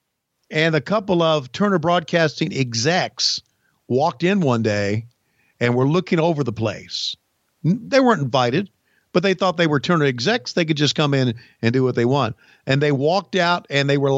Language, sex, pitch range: English, male, 130-175 Hz